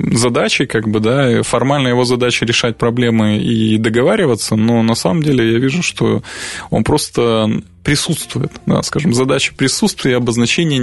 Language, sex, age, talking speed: Russian, male, 20-39, 145 wpm